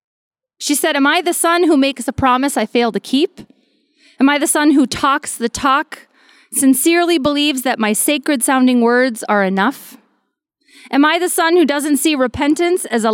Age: 30-49